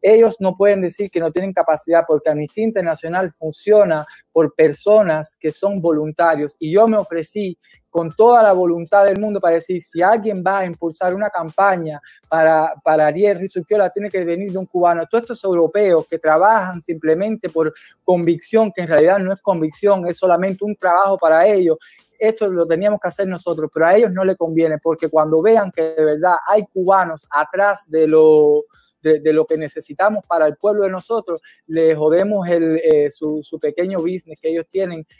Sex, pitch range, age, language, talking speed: male, 155-195 Hz, 20-39, English, 190 wpm